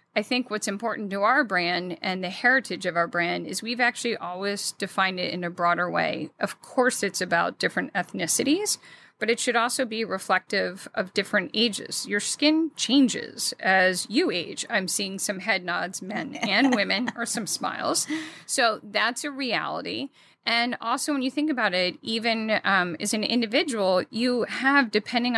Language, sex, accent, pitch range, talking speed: English, female, American, 185-240 Hz, 175 wpm